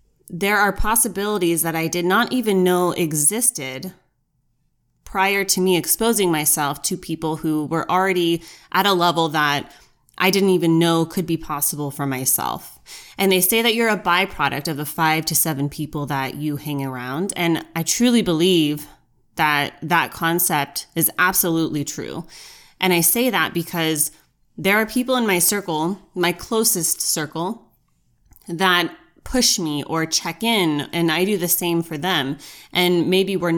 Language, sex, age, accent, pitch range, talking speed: English, female, 20-39, American, 155-195 Hz, 160 wpm